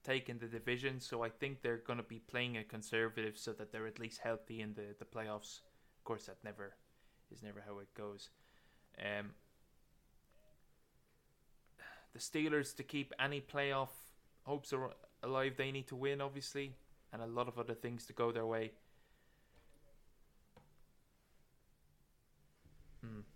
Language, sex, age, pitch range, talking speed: English, male, 20-39, 110-140 Hz, 150 wpm